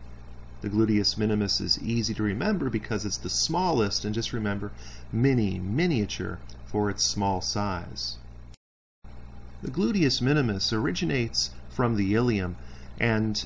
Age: 40-59